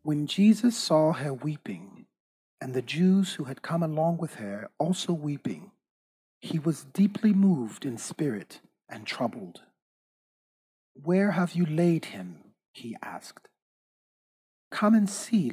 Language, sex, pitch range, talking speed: English, male, 130-180 Hz, 130 wpm